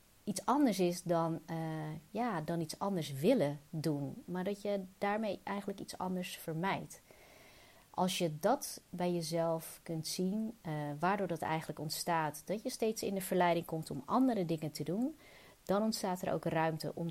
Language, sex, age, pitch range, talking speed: Dutch, female, 30-49, 155-195 Hz, 165 wpm